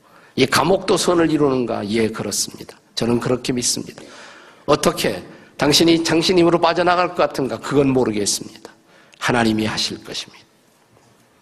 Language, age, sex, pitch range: Korean, 50-69, male, 120-170 Hz